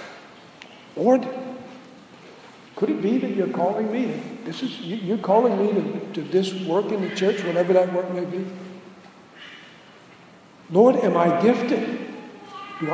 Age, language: 60-79, English